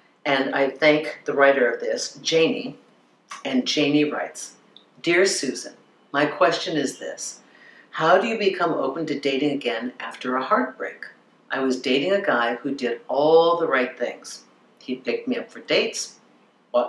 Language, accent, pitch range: English, American, 135-200 Hz